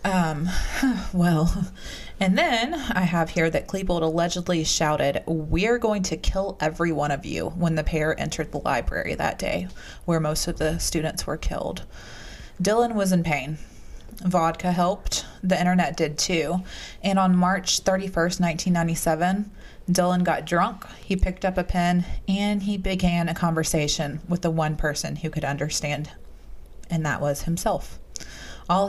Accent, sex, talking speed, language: American, female, 155 wpm, English